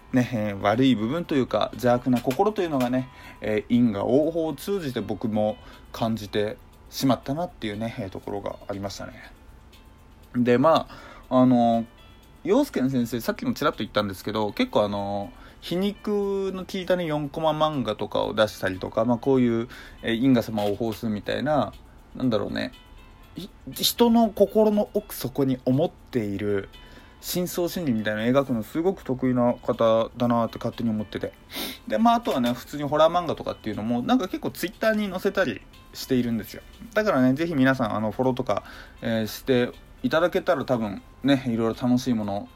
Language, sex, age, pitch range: Japanese, male, 20-39, 110-140 Hz